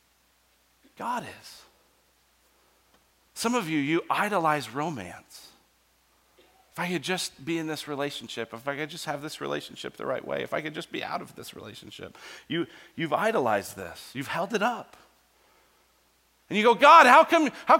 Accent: American